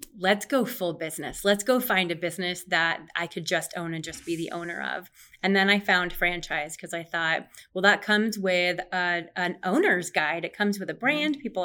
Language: English